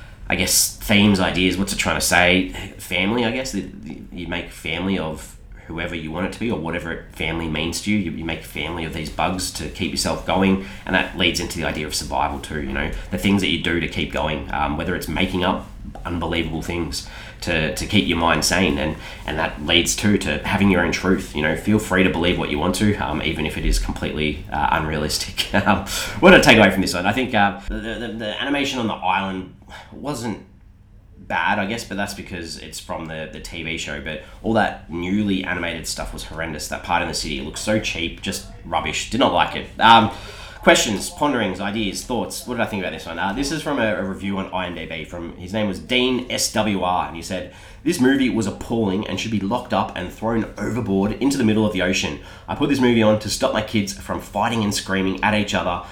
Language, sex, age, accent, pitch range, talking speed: English, male, 30-49, Australian, 85-100 Hz, 230 wpm